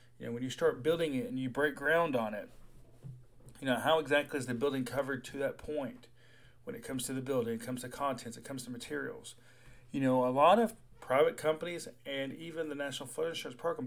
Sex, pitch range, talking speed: male, 120-150 Hz, 220 wpm